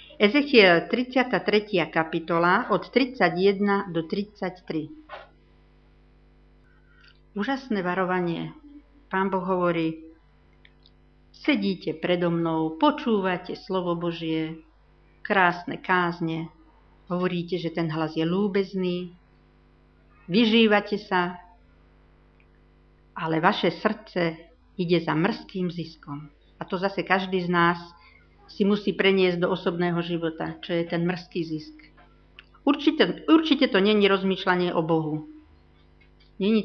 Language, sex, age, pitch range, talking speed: Slovak, female, 50-69, 160-205 Hz, 100 wpm